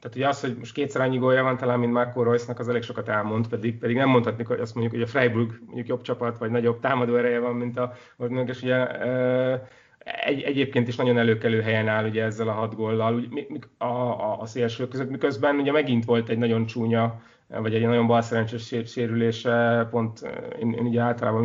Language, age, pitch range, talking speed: Hungarian, 30-49, 115-125 Hz, 205 wpm